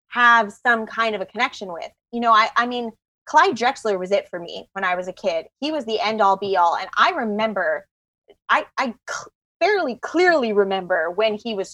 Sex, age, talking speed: female, 20-39, 215 wpm